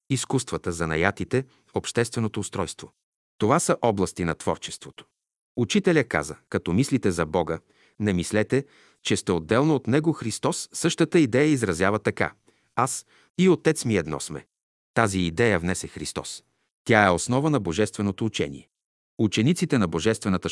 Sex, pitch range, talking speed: male, 90-125 Hz, 135 wpm